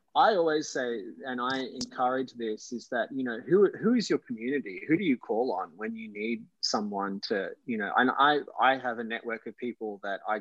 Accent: Australian